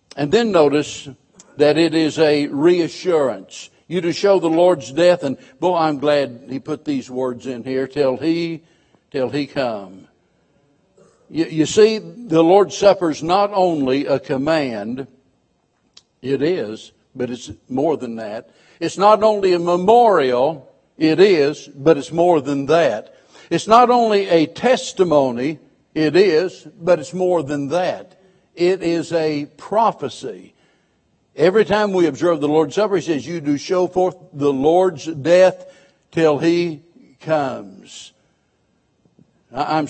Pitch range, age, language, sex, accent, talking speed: 140-180 Hz, 60-79, English, male, American, 140 wpm